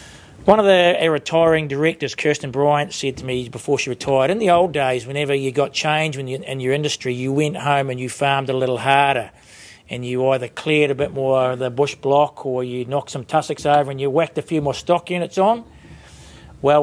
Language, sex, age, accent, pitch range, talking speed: English, male, 40-59, Australian, 130-150 Hz, 225 wpm